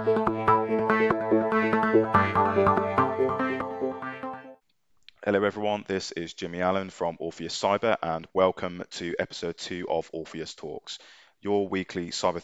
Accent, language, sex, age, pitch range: British, English, male, 20-39, 85-105 Hz